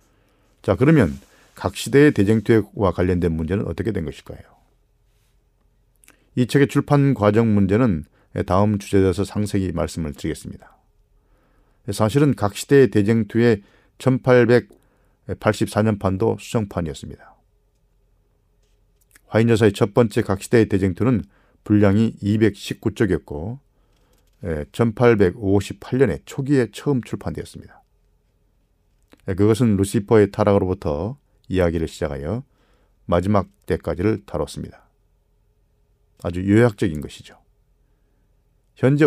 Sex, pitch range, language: male, 95-115 Hz, Korean